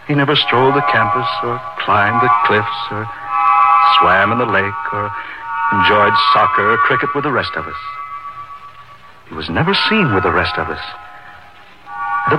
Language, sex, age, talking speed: English, male, 60-79, 165 wpm